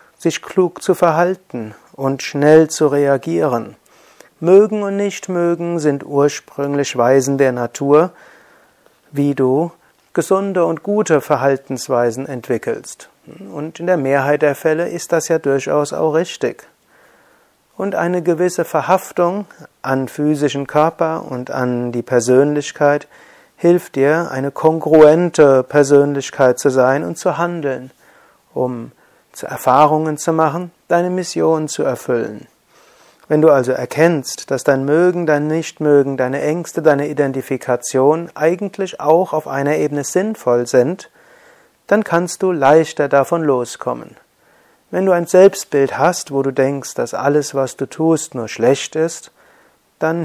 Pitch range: 140-175 Hz